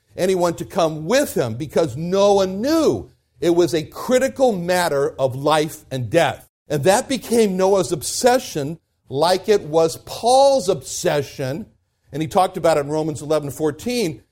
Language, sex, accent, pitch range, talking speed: English, male, American, 135-195 Hz, 150 wpm